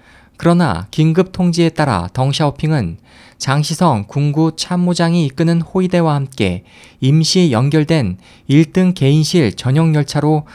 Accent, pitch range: native, 130-170 Hz